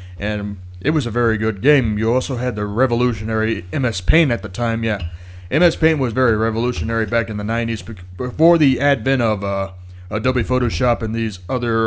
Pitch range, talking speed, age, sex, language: 95-125 Hz, 185 wpm, 30-49, male, English